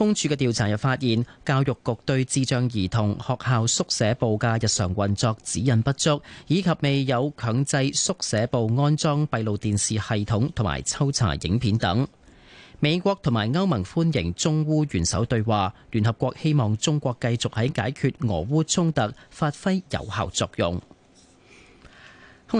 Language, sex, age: Chinese, male, 30-49